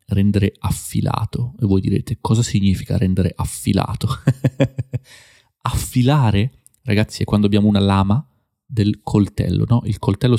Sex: male